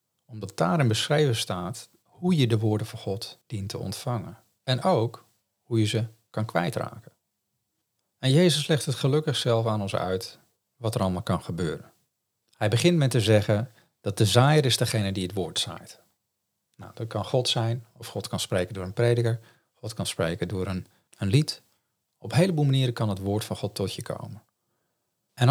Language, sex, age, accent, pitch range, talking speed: Dutch, male, 40-59, Dutch, 100-120 Hz, 190 wpm